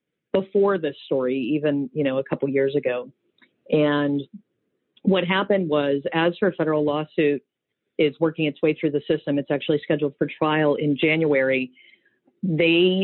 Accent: American